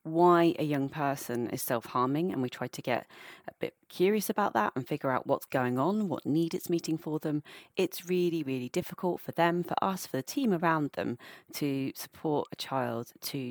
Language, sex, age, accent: English, female, 30-49, British